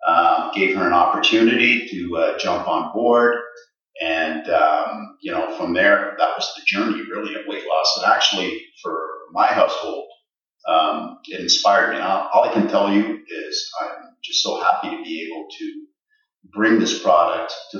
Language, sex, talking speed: English, male, 175 wpm